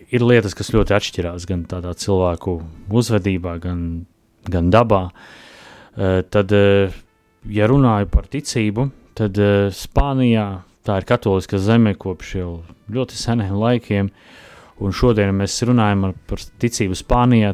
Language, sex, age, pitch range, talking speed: English, male, 30-49, 95-115 Hz, 115 wpm